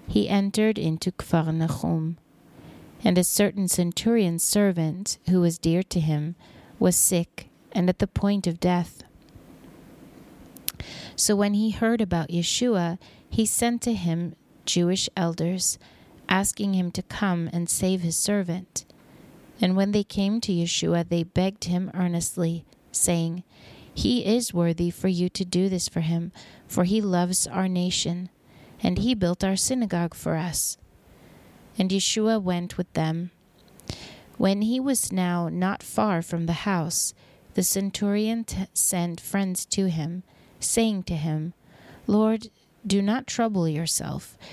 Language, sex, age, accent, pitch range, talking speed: English, female, 30-49, American, 170-200 Hz, 140 wpm